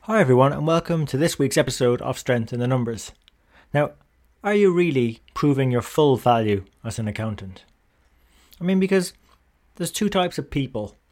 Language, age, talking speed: English, 30-49, 175 wpm